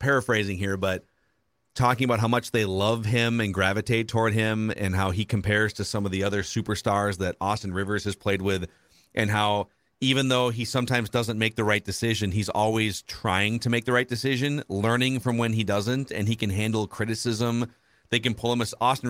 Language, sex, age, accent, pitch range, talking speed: English, male, 40-59, American, 105-125 Hz, 205 wpm